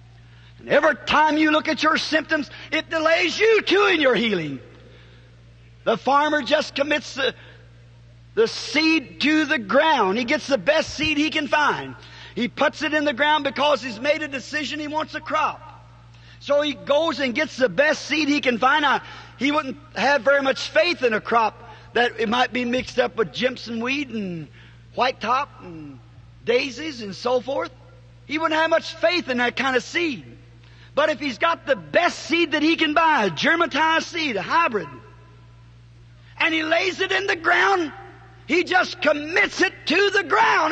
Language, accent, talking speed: English, American, 185 wpm